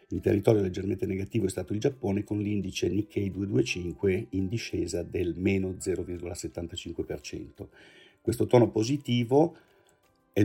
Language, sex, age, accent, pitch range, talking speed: Italian, male, 50-69, native, 95-110 Hz, 120 wpm